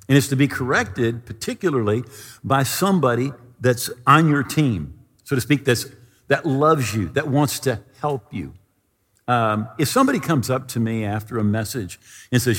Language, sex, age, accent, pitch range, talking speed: English, male, 50-69, American, 105-140 Hz, 170 wpm